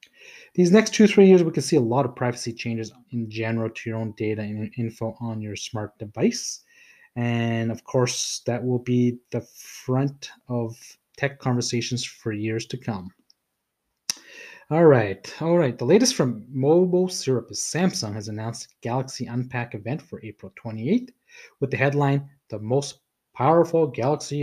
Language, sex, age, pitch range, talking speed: English, male, 30-49, 115-145 Hz, 160 wpm